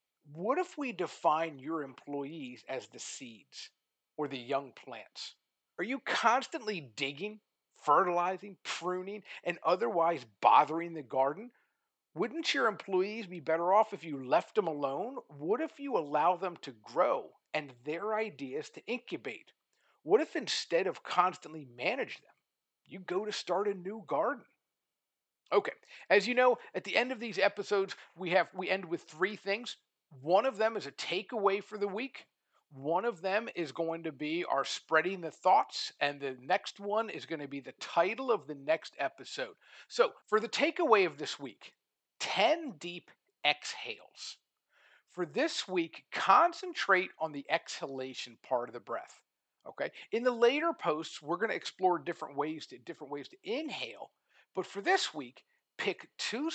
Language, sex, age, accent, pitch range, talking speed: English, male, 50-69, American, 160-235 Hz, 165 wpm